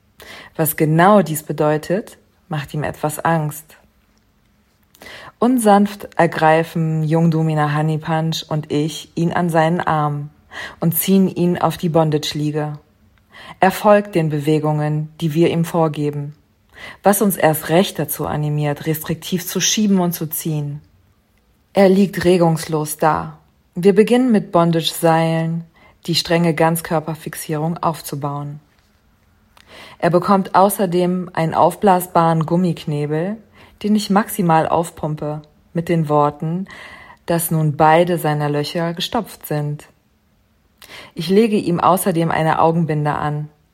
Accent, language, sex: German, German, female